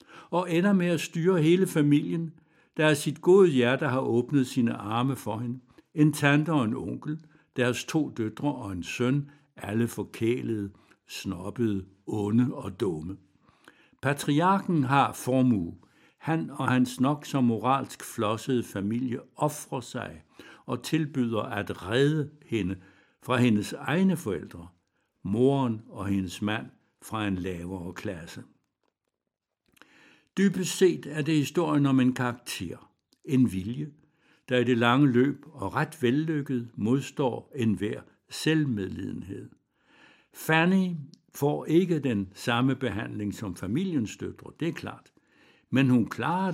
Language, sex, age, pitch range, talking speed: Danish, male, 60-79, 110-150 Hz, 130 wpm